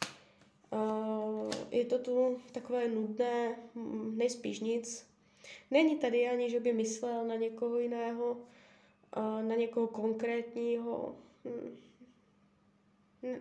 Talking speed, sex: 100 wpm, female